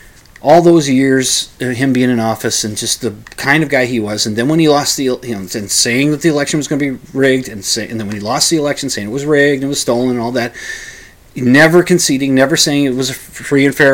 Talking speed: 270 wpm